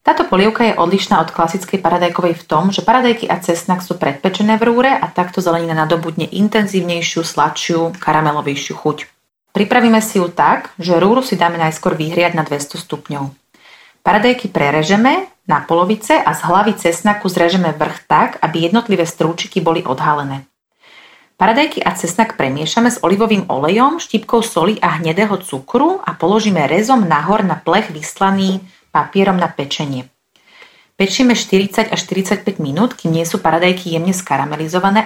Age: 30-49